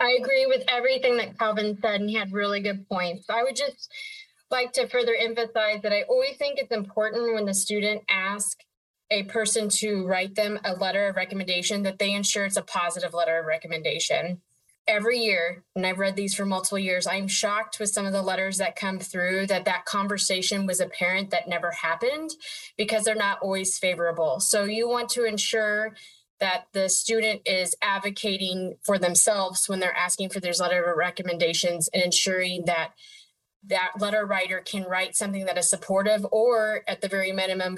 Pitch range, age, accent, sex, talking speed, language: 185-220 Hz, 20-39, American, female, 185 wpm, English